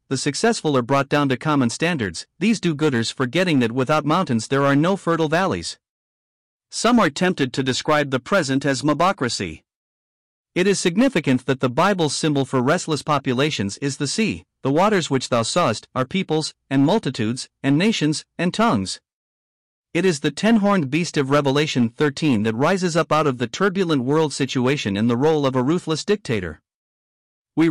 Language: English